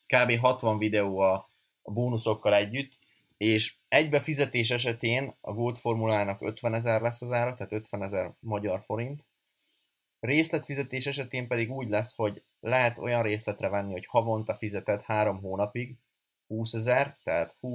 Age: 20-39